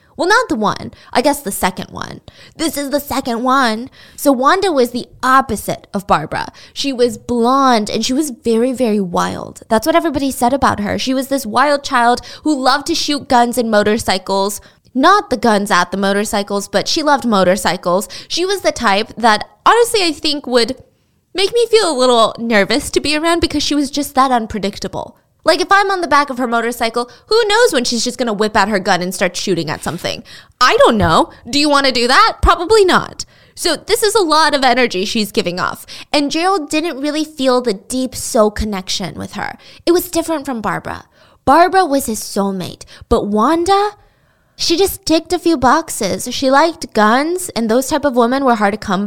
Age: 20-39